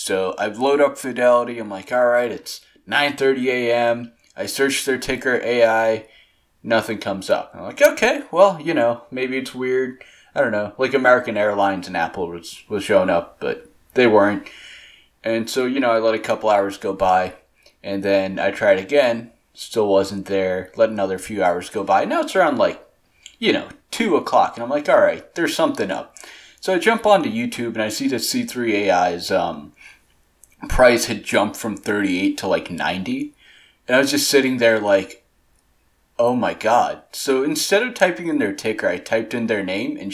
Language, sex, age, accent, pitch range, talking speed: English, male, 20-39, American, 100-140 Hz, 190 wpm